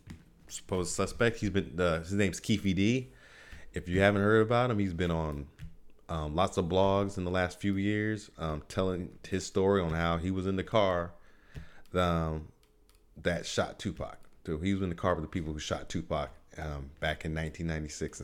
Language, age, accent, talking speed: English, 30-49, American, 190 wpm